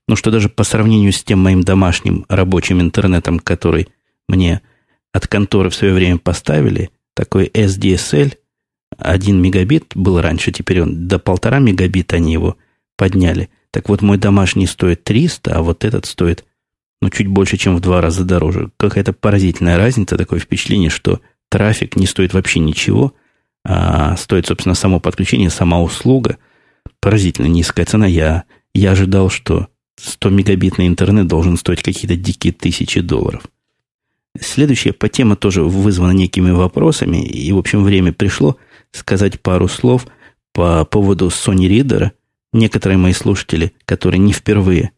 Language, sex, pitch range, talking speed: Russian, male, 90-105 Hz, 150 wpm